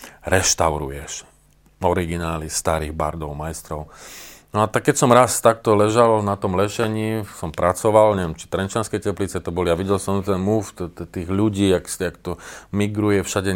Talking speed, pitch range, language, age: 170 wpm, 80-105 Hz, Slovak, 40-59